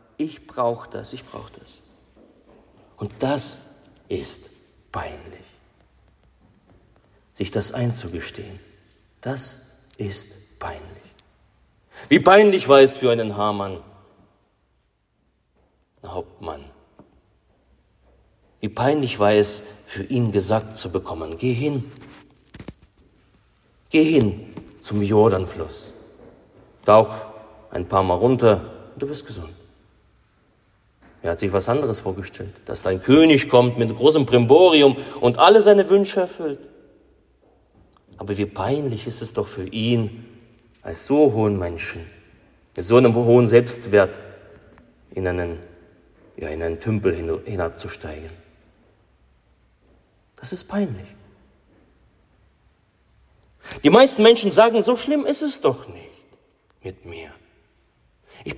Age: 40-59